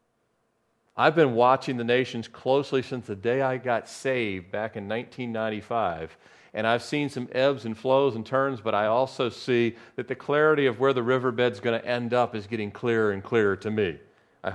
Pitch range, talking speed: 110-135 Hz, 195 wpm